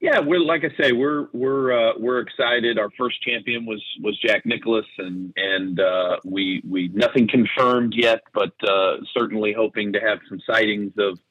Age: 40-59